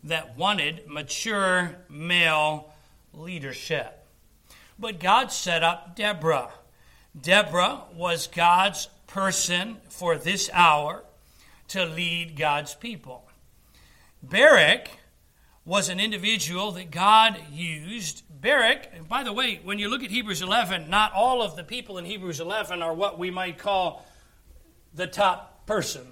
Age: 60-79